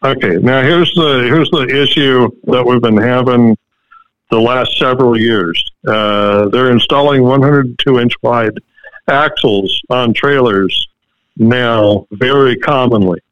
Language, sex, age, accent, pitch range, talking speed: English, male, 60-79, American, 110-140 Hz, 130 wpm